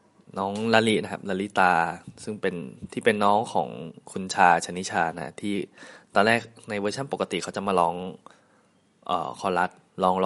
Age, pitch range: 20-39, 95-115 Hz